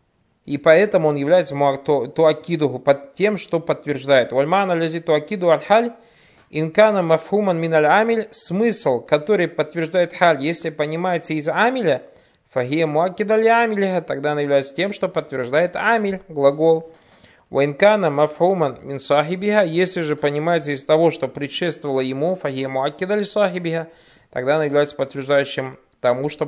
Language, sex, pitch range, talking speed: Russian, male, 140-185 Hz, 110 wpm